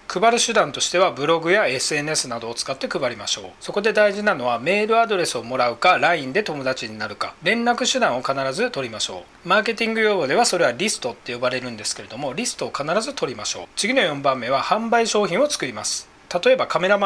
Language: Japanese